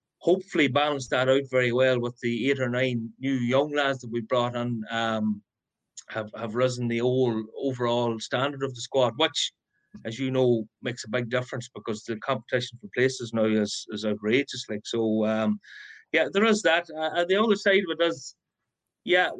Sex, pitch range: male, 120-145 Hz